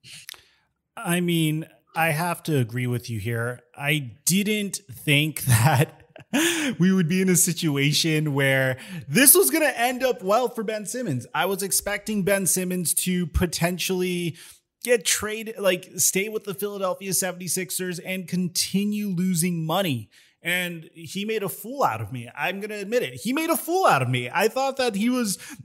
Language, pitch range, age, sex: English, 160-225 Hz, 30-49, male